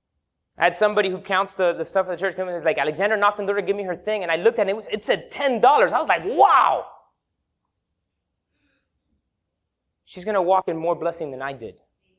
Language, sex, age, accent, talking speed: English, male, 20-39, American, 240 wpm